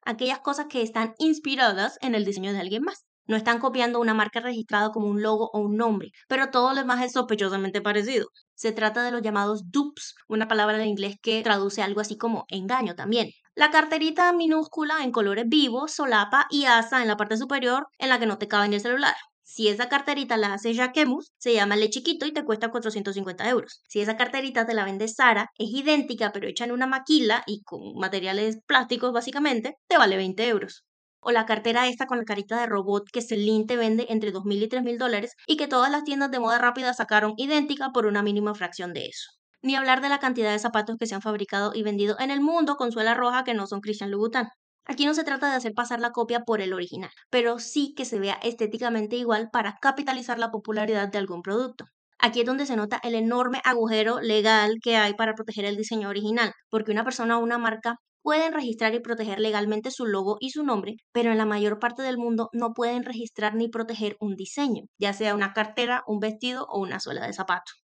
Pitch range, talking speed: 210-255 Hz, 220 wpm